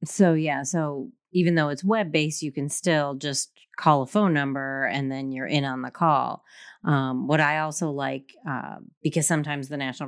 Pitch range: 135-155 Hz